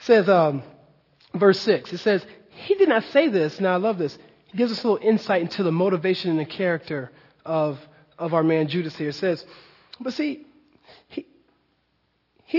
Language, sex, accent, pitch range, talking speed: English, male, American, 175-235 Hz, 190 wpm